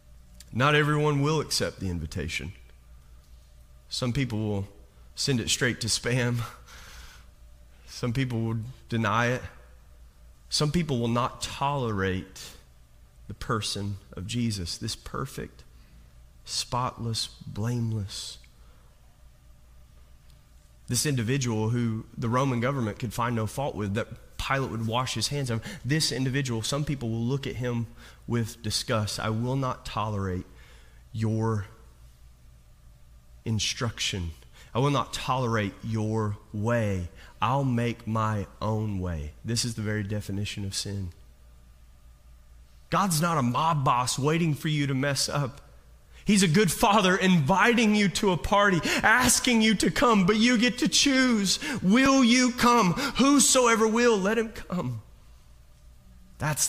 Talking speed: 130 wpm